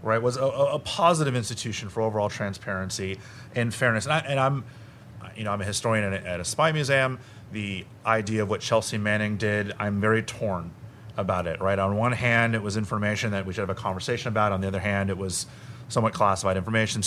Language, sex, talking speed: English, male, 215 wpm